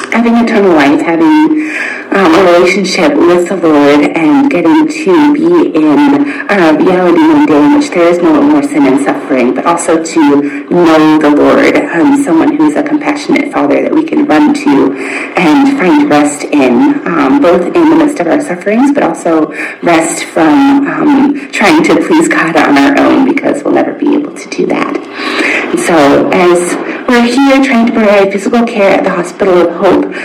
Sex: female